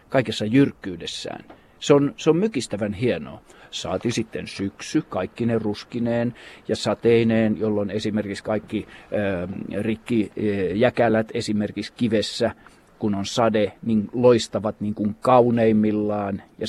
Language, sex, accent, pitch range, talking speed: Finnish, male, native, 105-120 Hz, 120 wpm